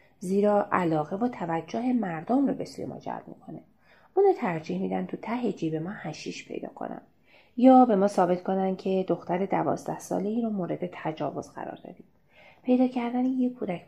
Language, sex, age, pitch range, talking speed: Persian, female, 30-49, 165-215 Hz, 175 wpm